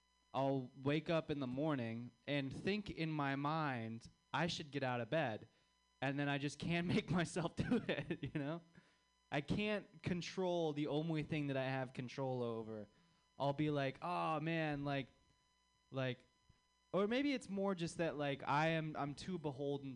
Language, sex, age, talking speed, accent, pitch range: English, male, 20-39, 175 wpm, American, 130-170 Hz